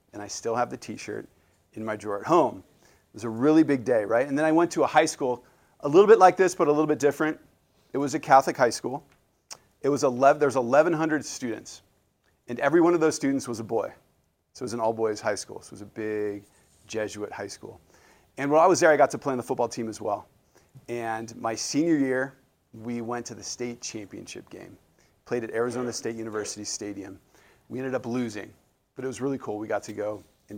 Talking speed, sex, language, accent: 230 wpm, male, English, American